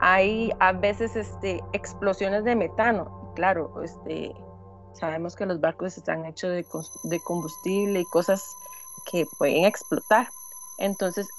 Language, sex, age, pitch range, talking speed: Spanish, female, 30-49, 180-235 Hz, 115 wpm